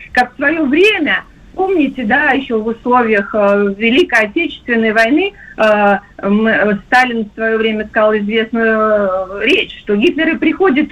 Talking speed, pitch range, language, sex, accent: 120 wpm, 225-340 Hz, Russian, female, native